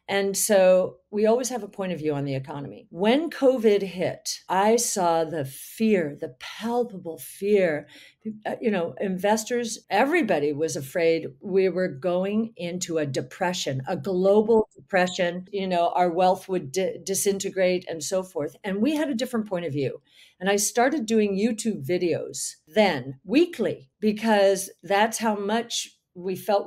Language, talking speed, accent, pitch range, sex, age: Italian, 155 wpm, American, 180-240 Hz, female, 50-69